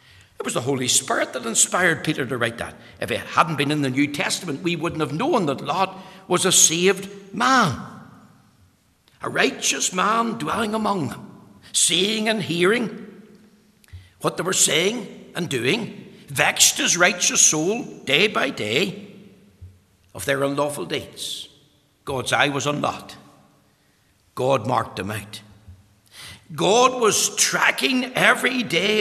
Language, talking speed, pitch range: English, 145 wpm, 110-180 Hz